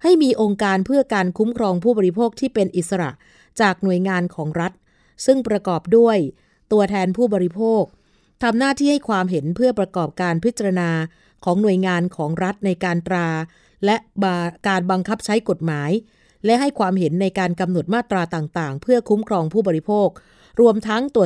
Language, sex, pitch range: Thai, female, 180-225 Hz